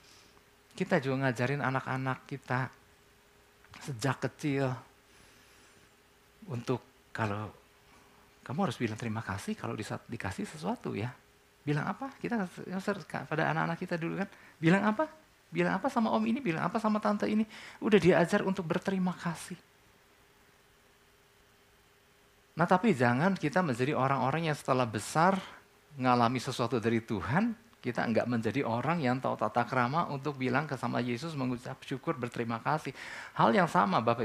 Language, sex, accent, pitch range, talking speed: Indonesian, male, native, 115-165 Hz, 135 wpm